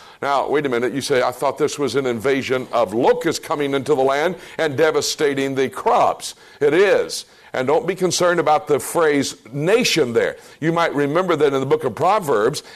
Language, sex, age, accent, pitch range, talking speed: English, male, 60-79, American, 140-185 Hz, 200 wpm